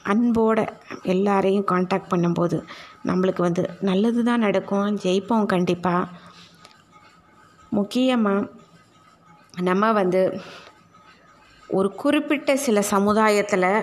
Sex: female